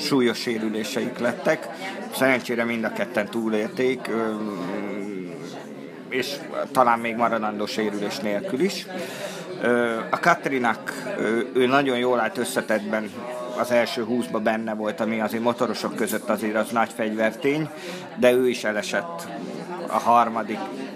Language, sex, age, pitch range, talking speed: Hungarian, male, 50-69, 110-130 Hz, 115 wpm